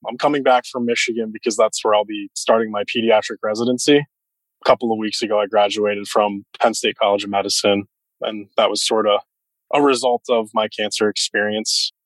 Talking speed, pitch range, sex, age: 190 wpm, 100-115 Hz, male, 20-39